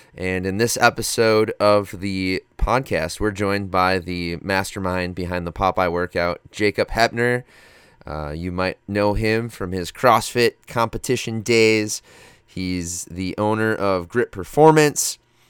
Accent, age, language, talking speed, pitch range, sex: American, 20-39, English, 130 wpm, 95-120 Hz, male